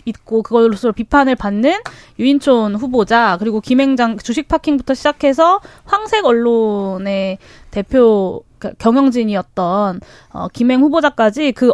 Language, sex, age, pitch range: Korean, female, 20-39, 215-310 Hz